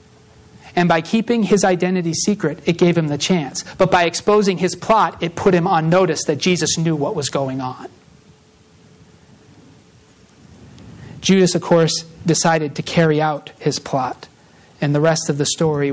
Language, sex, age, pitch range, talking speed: English, male, 40-59, 160-205 Hz, 160 wpm